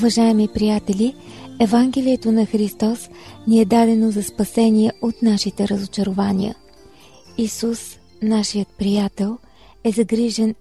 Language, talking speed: Bulgarian, 100 wpm